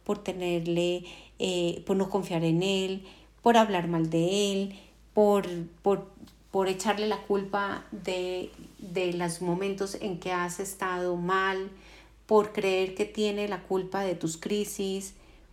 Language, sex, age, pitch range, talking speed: Spanish, female, 40-59, 180-220 Hz, 135 wpm